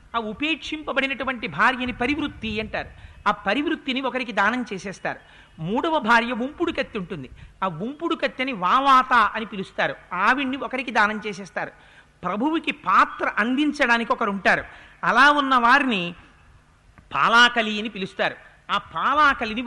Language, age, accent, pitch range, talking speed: Telugu, 50-69, native, 220-275 Hz, 115 wpm